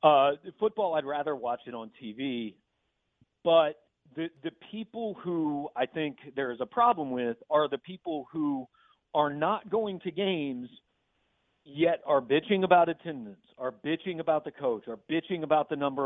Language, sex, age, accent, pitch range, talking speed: English, male, 50-69, American, 145-205 Hz, 170 wpm